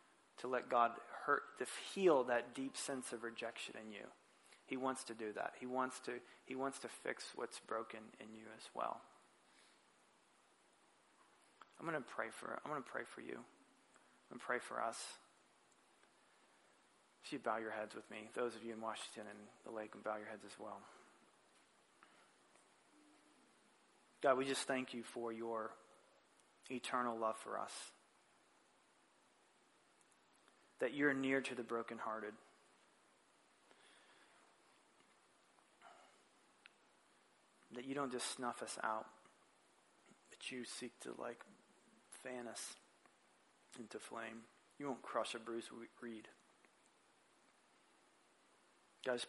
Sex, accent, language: male, American, English